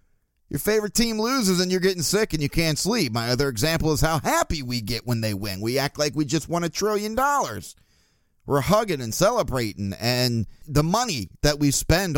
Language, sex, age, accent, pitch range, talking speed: English, male, 30-49, American, 120-165 Hz, 205 wpm